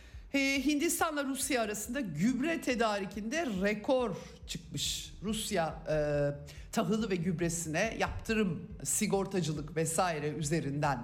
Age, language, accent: 50-69, Turkish, native